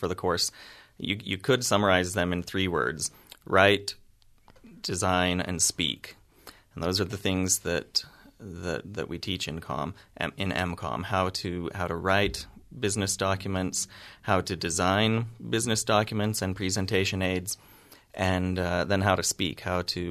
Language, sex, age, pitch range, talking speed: English, male, 30-49, 90-105 Hz, 155 wpm